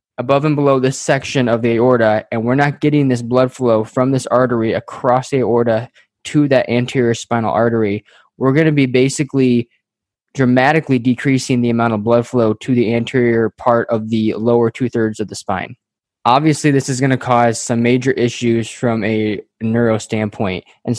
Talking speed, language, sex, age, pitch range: 185 wpm, English, male, 20-39, 115-130 Hz